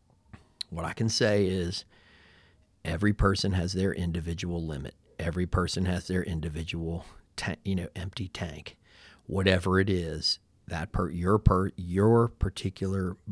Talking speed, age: 135 wpm, 40-59